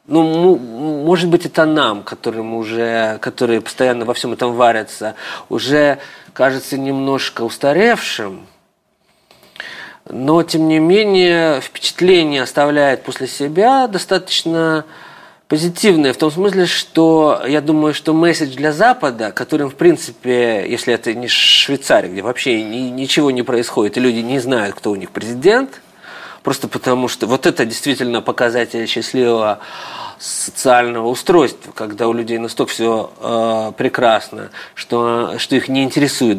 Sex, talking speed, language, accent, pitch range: male, 125 wpm, Russian, native, 120-160 Hz